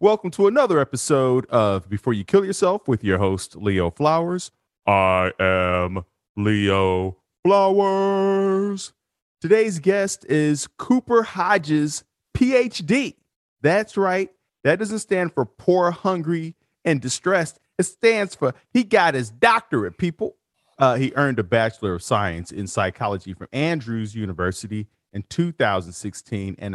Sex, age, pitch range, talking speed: male, 40-59, 100-155 Hz, 130 wpm